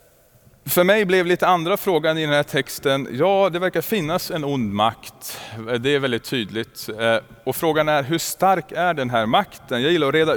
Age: 30-49